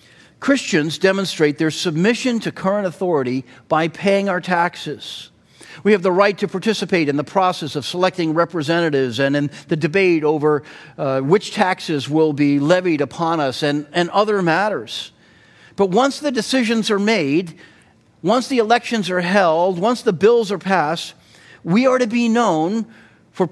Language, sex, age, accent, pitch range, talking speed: English, male, 40-59, American, 140-205 Hz, 160 wpm